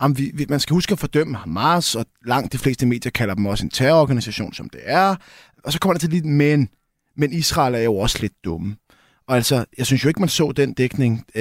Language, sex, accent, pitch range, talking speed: Danish, male, native, 115-150 Hz, 225 wpm